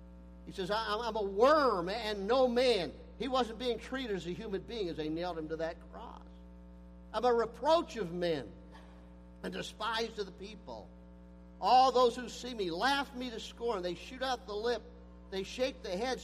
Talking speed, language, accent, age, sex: 190 wpm, English, American, 50-69, male